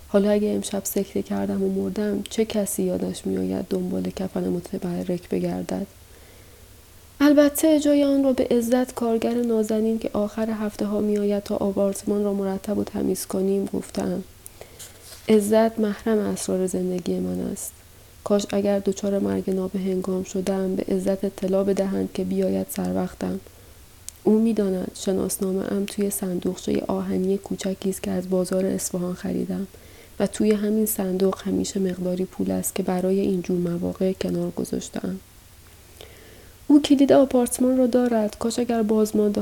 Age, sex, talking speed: 30-49, female, 140 wpm